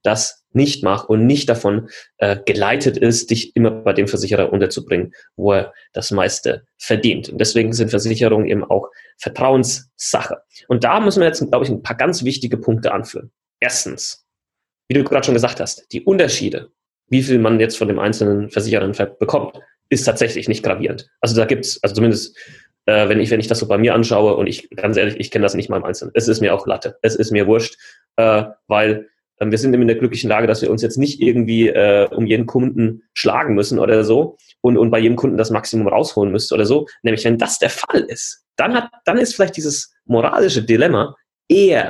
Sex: male